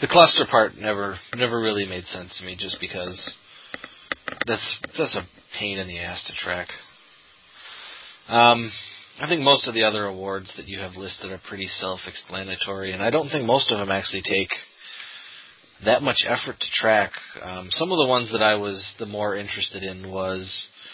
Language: English